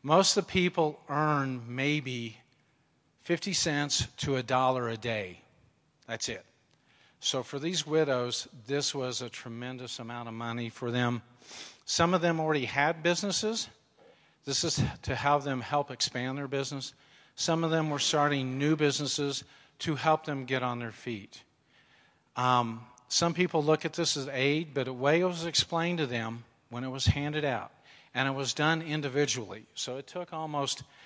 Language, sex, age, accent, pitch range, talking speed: English, male, 50-69, American, 120-155 Hz, 170 wpm